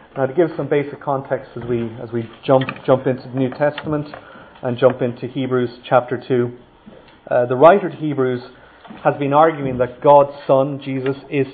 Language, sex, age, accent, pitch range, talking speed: English, male, 30-49, Irish, 120-140 Hz, 180 wpm